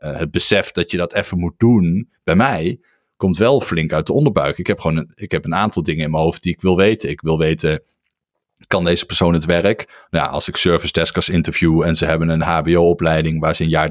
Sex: male